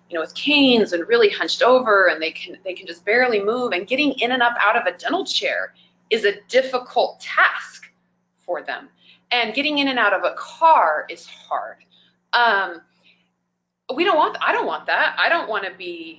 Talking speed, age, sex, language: 205 wpm, 20-39, female, English